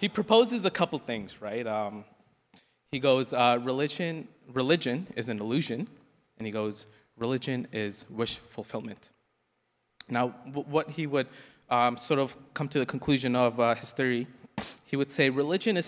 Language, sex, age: English, male, 20-39